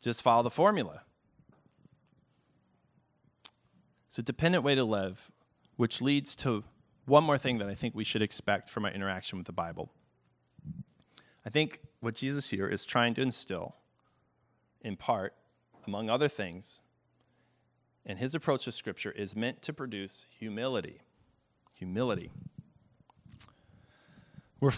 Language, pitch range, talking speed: English, 100-130 Hz, 130 wpm